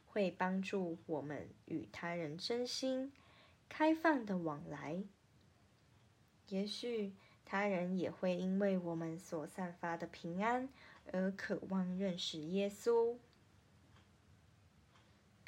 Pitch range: 145-220 Hz